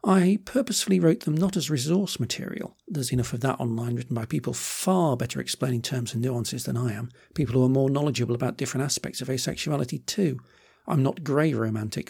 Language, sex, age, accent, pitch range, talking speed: English, male, 50-69, British, 125-190 Hz, 200 wpm